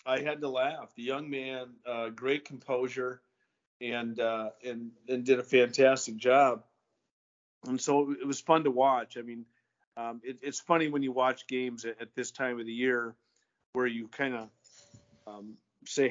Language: English